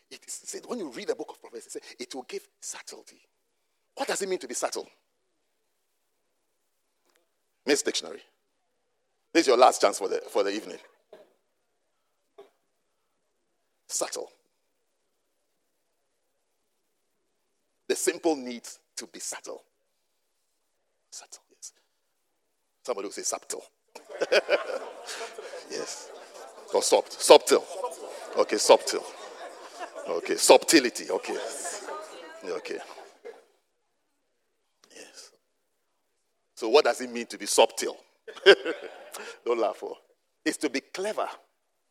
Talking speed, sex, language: 105 wpm, male, English